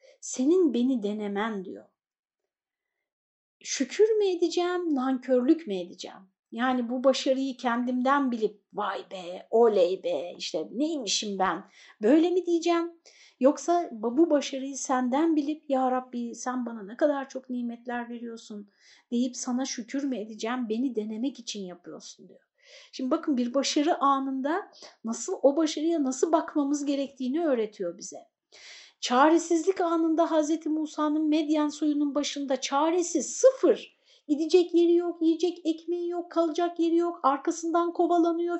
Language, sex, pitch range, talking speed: Turkish, female, 260-340 Hz, 125 wpm